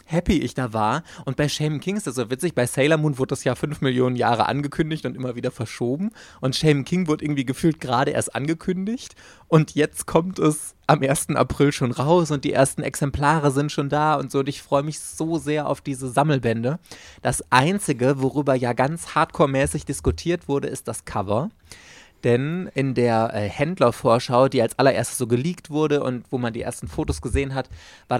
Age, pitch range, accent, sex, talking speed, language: 20-39, 125-155 Hz, German, male, 200 wpm, German